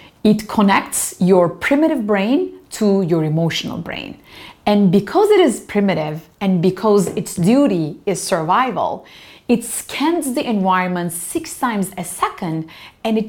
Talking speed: 135 wpm